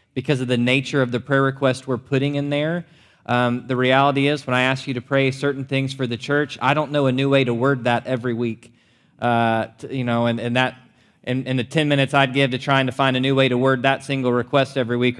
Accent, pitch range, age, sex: American, 125-145 Hz, 20-39, male